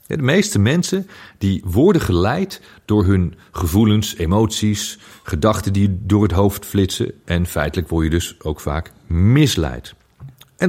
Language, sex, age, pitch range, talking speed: Dutch, male, 40-59, 85-110 Hz, 140 wpm